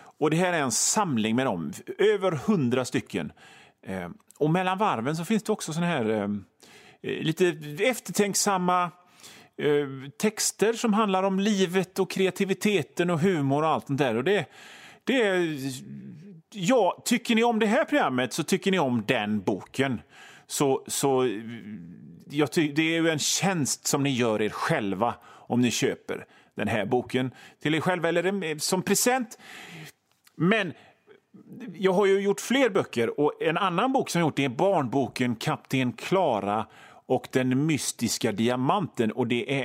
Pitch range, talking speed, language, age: 130-195 Hz, 160 wpm, Swedish, 30-49